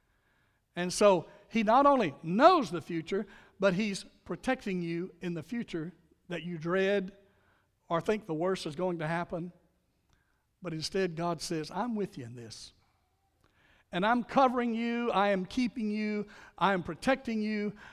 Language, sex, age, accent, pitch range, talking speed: English, male, 60-79, American, 160-220 Hz, 155 wpm